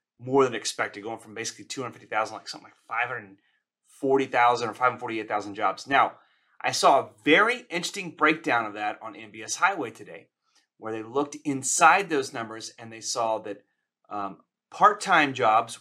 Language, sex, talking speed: English, male, 150 wpm